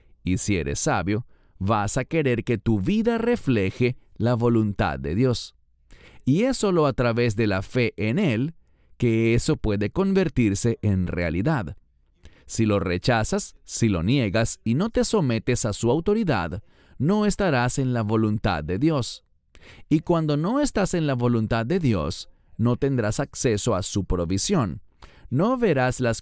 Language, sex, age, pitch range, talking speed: English, male, 40-59, 100-145 Hz, 160 wpm